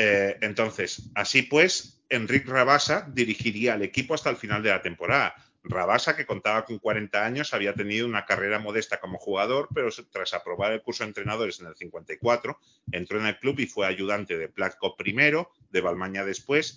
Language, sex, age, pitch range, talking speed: Spanish, male, 30-49, 100-140 Hz, 180 wpm